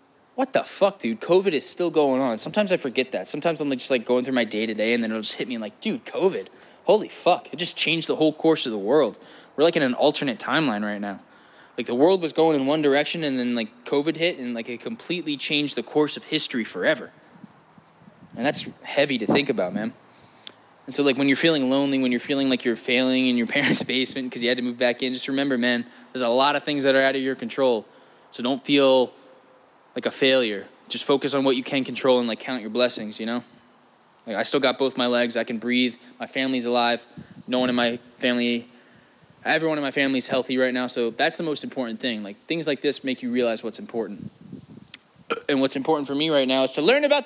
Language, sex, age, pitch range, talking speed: English, male, 10-29, 120-155 Hz, 240 wpm